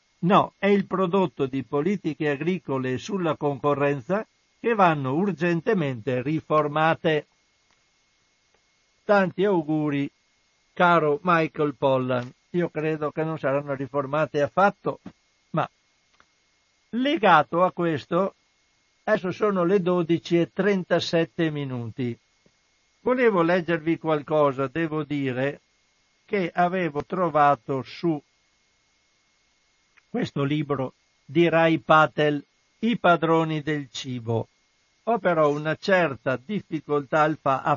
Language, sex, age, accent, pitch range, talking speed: Italian, male, 60-79, native, 145-175 Hz, 90 wpm